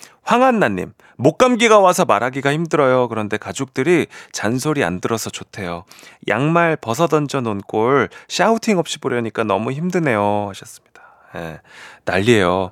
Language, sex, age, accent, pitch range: Korean, male, 30-49, native, 100-155 Hz